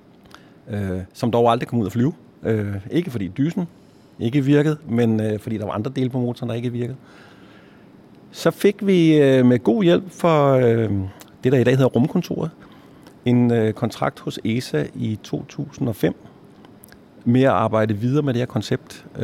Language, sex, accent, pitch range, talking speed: Danish, male, native, 105-135 Hz, 155 wpm